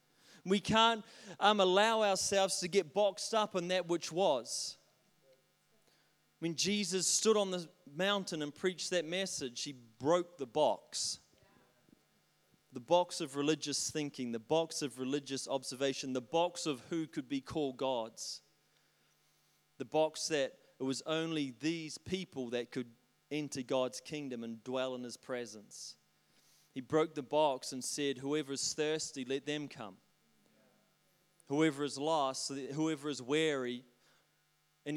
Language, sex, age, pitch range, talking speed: English, male, 30-49, 140-175 Hz, 140 wpm